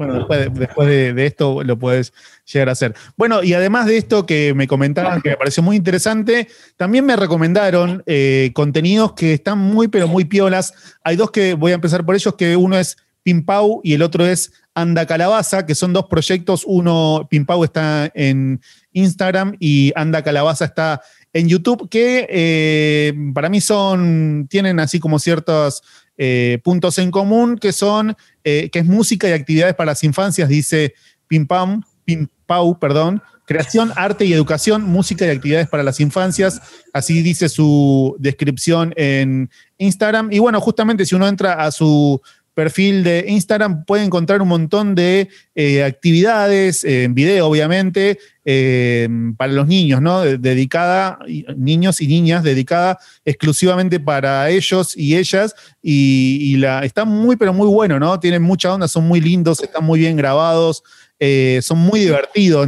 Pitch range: 145-190 Hz